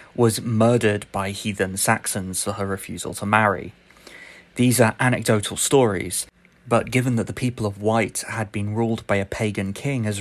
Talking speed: 170 wpm